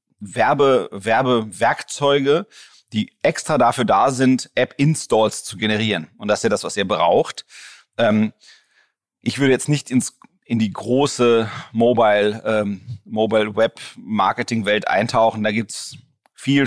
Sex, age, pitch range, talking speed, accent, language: male, 30-49, 110-125 Hz, 115 wpm, German, German